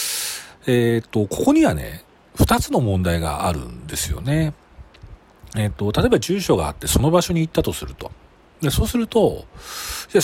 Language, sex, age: Japanese, male, 40-59